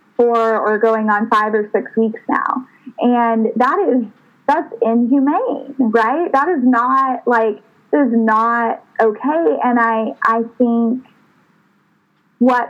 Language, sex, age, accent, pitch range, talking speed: English, female, 20-39, American, 225-250 Hz, 130 wpm